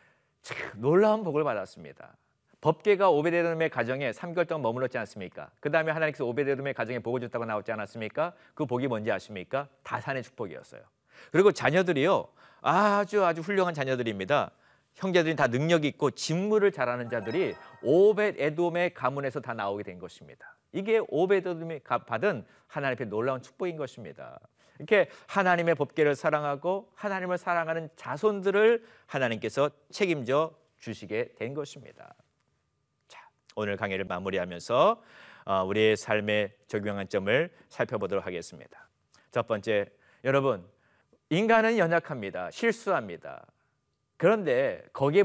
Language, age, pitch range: Korean, 40-59, 125-190 Hz